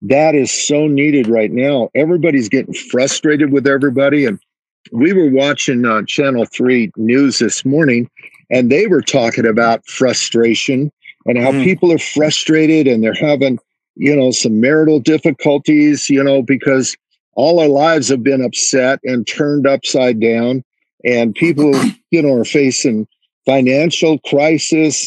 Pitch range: 125-150 Hz